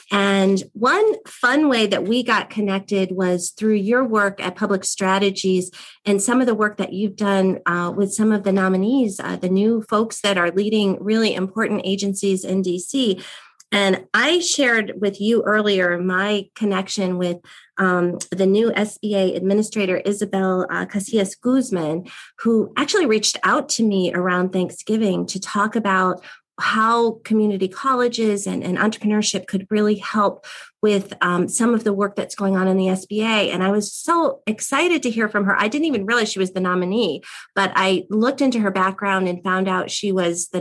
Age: 30-49